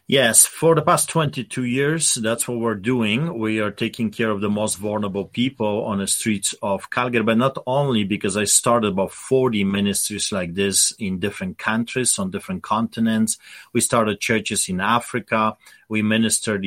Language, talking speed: English, 175 wpm